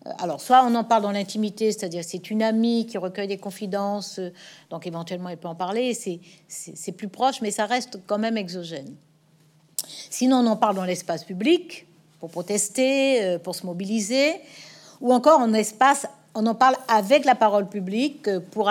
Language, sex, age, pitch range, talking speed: French, female, 60-79, 175-240 Hz, 180 wpm